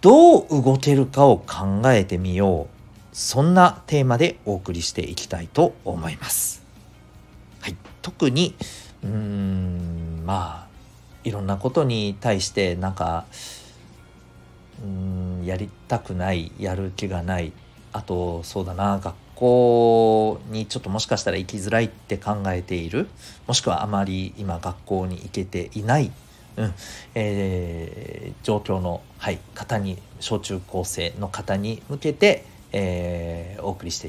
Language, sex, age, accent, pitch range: Japanese, male, 50-69, native, 90-120 Hz